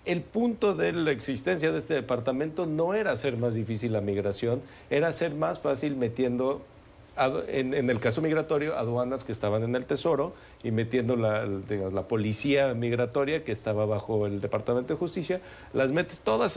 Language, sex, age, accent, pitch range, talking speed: Spanish, male, 40-59, Mexican, 110-140 Hz, 165 wpm